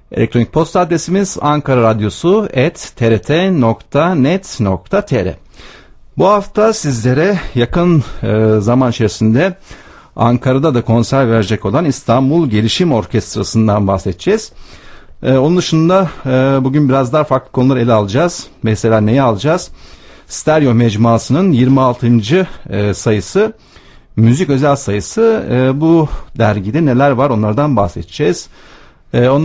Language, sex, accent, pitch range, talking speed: Turkish, male, native, 110-145 Hz, 100 wpm